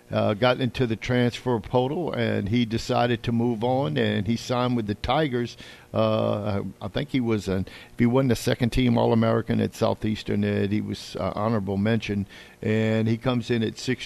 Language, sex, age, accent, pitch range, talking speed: English, male, 50-69, American, 105-125 Hz, 195 wpm